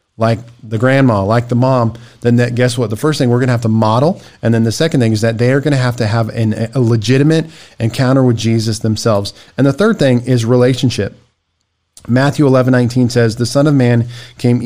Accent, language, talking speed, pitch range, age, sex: American, English, 225 wpm, 115-130 Hz, 40-59, male